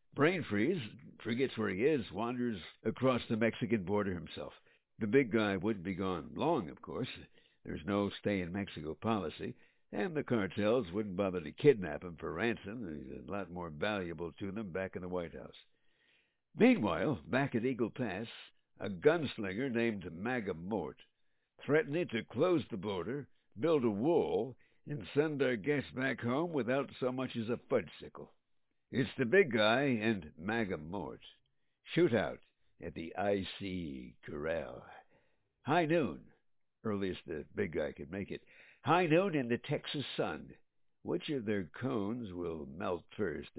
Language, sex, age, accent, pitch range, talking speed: English, male, 60-79, American, 95-130 Hz, 150 wpm